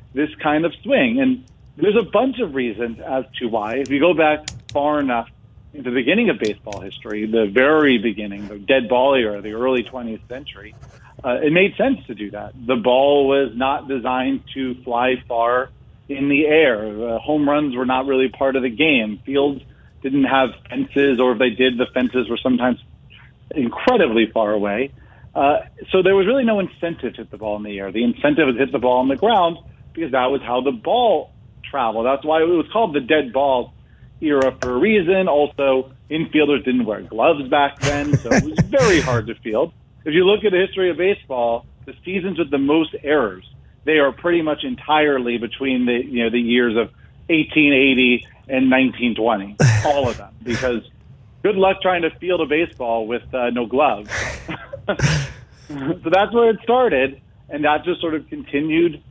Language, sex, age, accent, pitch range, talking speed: English, male, 40-59, American, 120-150 Hz, 195 wpm